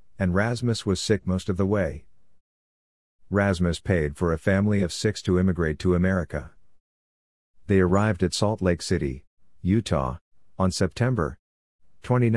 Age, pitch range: 50-69, 85-105 Hz